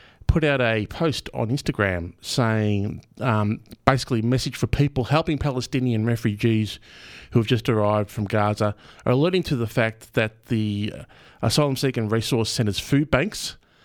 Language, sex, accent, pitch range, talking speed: English, male, Australian, 100-120 Hz, 150 wpm